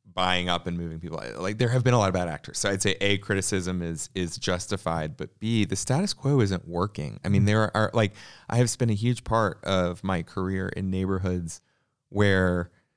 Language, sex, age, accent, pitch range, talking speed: English, male, 30-49, American, 90-115 Hz, 215 wpm